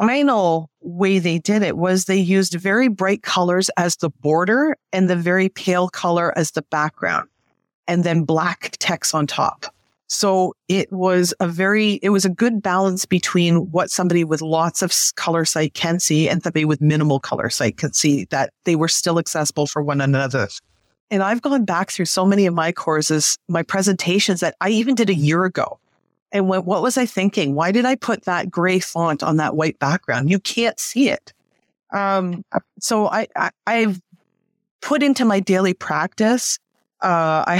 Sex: female